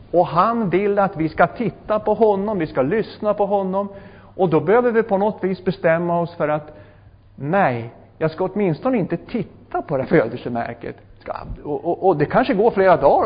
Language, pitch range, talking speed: Swedish, 135-195 Hz, 195 wpm